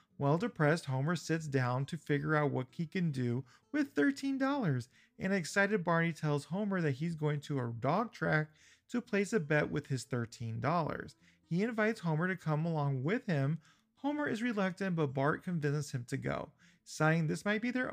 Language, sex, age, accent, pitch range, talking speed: English, male, 40-59, American, 140-195 Hz, 185 wpm